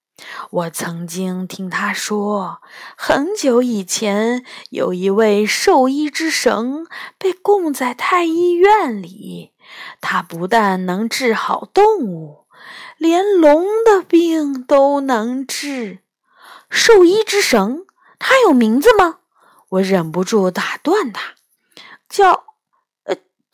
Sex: female